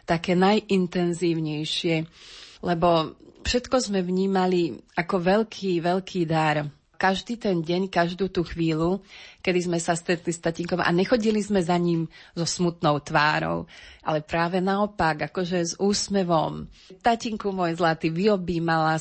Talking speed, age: 125 wpm, 30-49